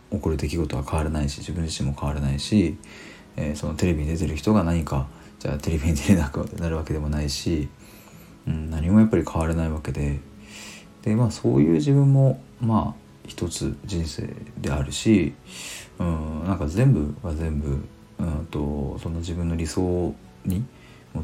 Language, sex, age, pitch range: Japanese, male, 40-59, 75-95 Hz